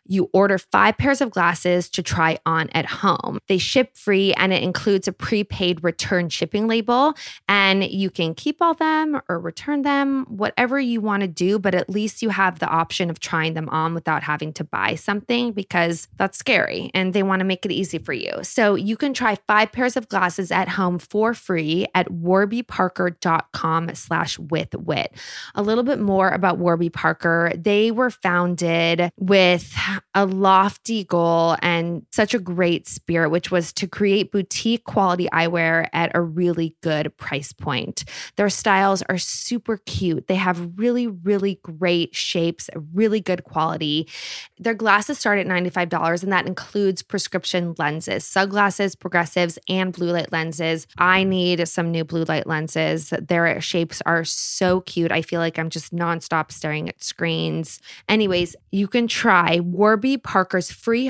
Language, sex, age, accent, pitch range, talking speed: English, female, 20-39, American, 170-205 Hz, 170 wpm